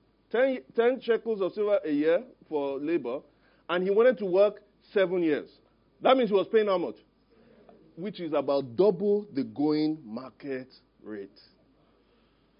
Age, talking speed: 40-59, 150 wpm